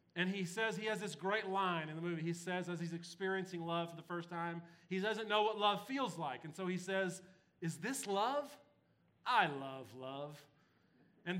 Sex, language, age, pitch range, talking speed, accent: male, English, 40-59, 160-200 Hz, 205 wpm, American